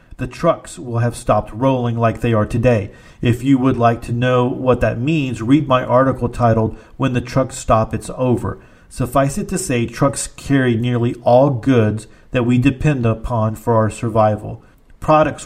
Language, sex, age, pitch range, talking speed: English, male, 50-69, 115-130 Hz, 180 wpm